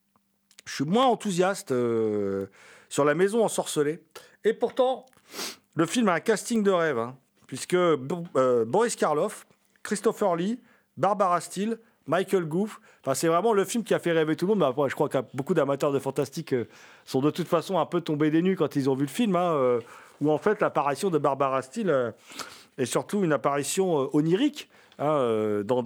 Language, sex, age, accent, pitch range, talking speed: French, male, 40-59, French, 130-190 Hz, 195 wpm